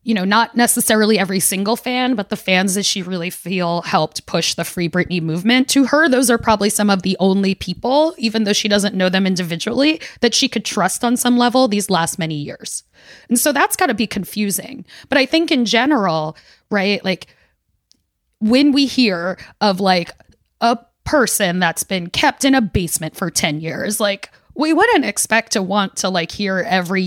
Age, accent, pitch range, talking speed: 20-39, American, 185-235 Hz, 195 wpm